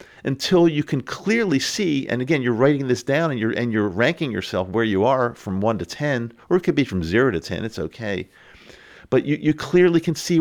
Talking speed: 230 wpm